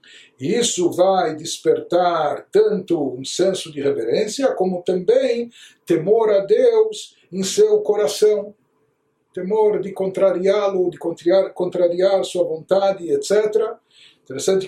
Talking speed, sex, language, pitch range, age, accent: 105 wpm, male, Portuguese, 180-225 Hz, 60-79, Brazilian